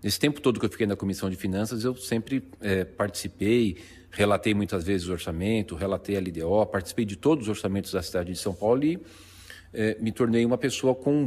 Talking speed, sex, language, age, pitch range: 215 wpm, male, Portuguese, 40-59, 100-135 Hz